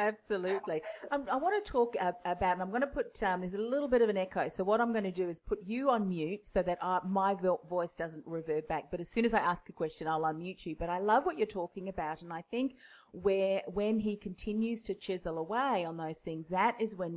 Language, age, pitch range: English, 40-59, 170-225 Hz